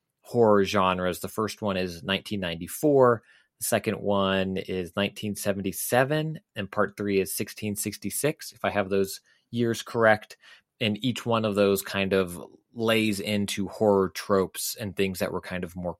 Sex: male